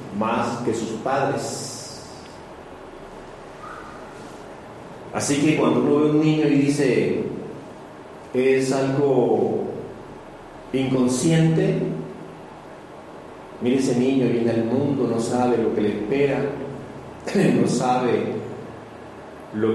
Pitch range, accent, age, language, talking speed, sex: 115-135 Hz, Mexican, 50-69, Spanish, 95 wpm, male